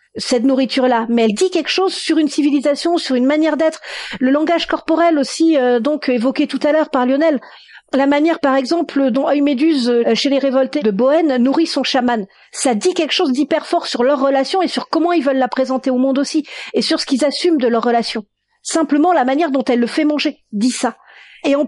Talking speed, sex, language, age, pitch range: 220 wpm, female, French, 40-59, 245-310 Hz